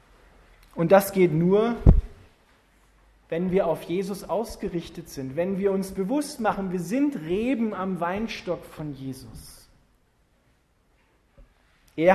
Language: German